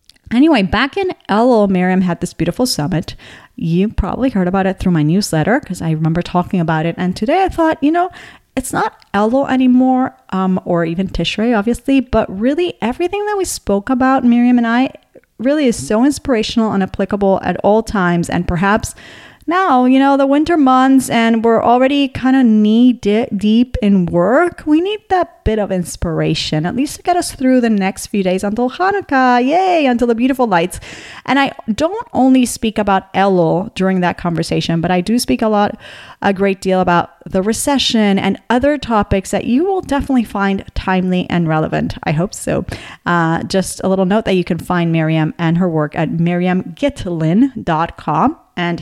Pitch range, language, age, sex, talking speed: 180-255 Hz, English, 30-49, female, 185 wpm